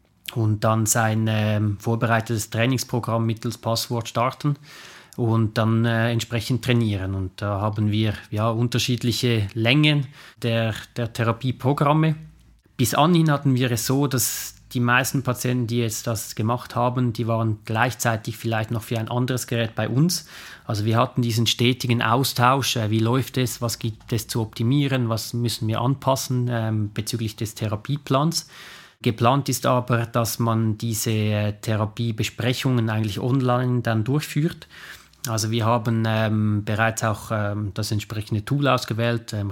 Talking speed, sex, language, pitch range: 145 wpm, male, German, 110-125 Hz